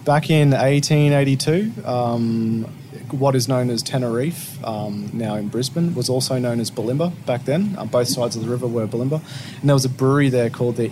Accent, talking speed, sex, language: Australian, 190 wpm, male, English